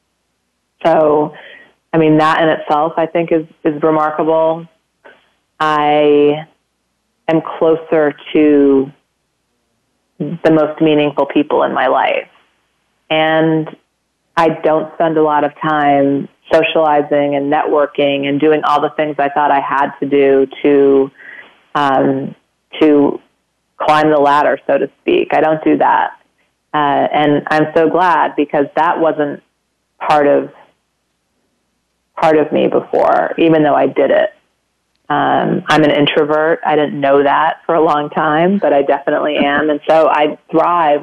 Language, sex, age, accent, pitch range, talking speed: English, female, 30-49, American, 145-160 Hz, 140 wpm